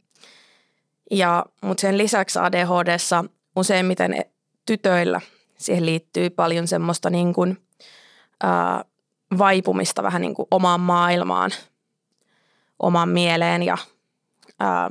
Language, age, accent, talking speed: Finnish, 20-39, native, 95 wpm